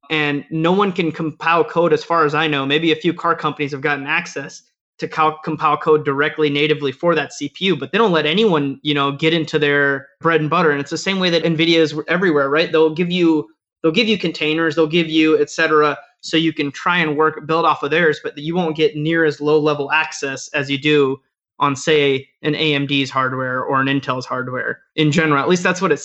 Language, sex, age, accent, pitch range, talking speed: English, male, 20-39, American, 145-165 Hz, 230 wpm